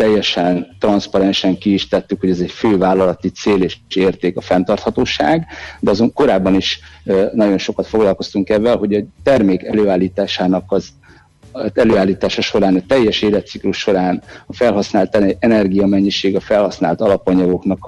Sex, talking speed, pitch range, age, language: male, 140 wpm, 90-100 Hz, 60-79, Hungarian